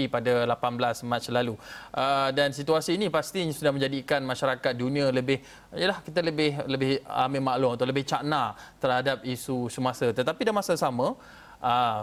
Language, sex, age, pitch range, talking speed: Malay, male, 20-39, 125-145 Hz, 150 wpm